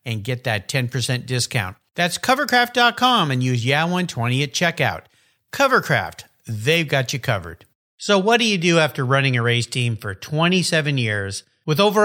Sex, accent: male, American